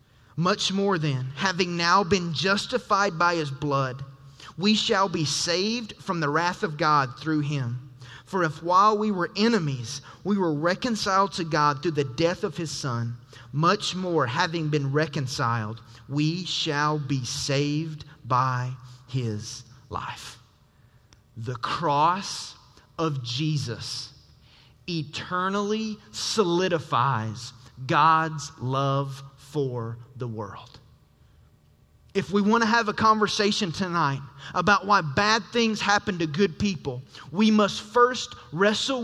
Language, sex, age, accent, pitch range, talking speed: English, male, 30-49, American, 130-190 Hz, 125 wpm